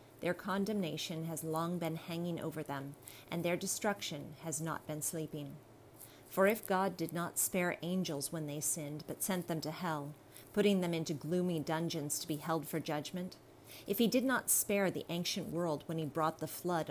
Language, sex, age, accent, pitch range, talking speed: English, female, 30-49, American, 150-175 Hz, 190 wpm